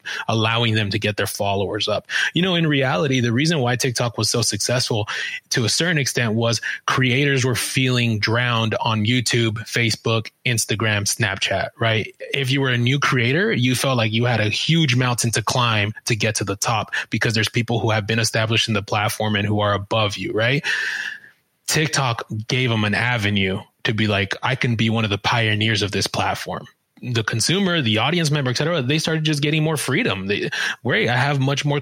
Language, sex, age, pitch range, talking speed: English, male, 20-39, 110-135 Hz, 200 wpm